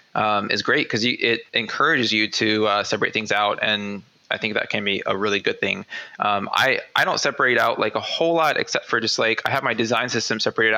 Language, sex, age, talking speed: English, male, 20-39, 235 wpm